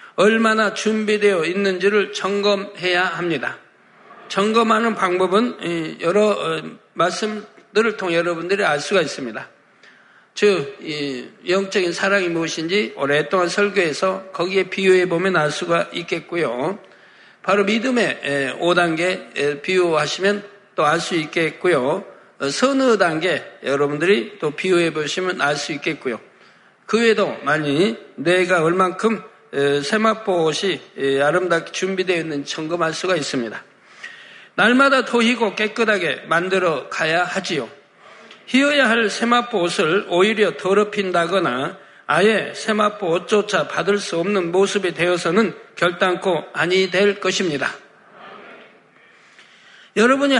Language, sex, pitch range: Korean, male, 170-210 Hz